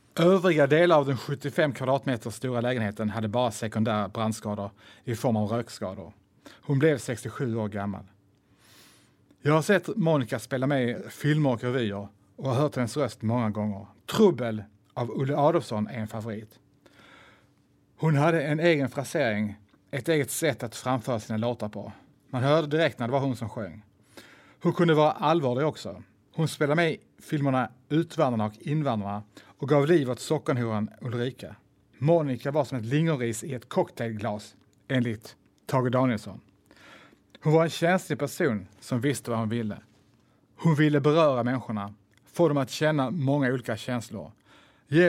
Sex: male